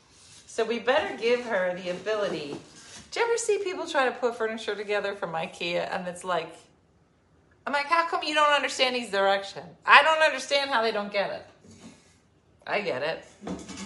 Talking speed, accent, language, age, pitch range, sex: 180 wpm, American, English, 40-59, 185-250 Hz, female